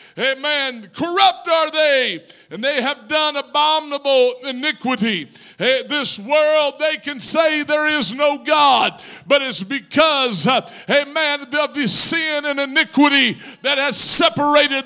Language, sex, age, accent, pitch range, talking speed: English, male, 50-69, American, 285-340 Hz, 125 wpm